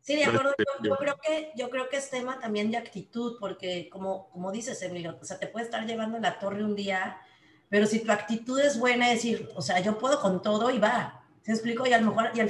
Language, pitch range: Spanish, 195-235 Hz